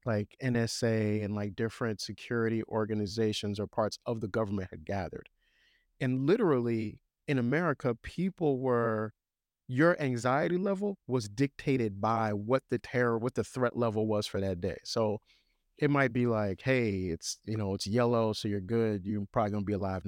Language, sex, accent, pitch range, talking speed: English, male, American, 110-140 Hz, 170 wpm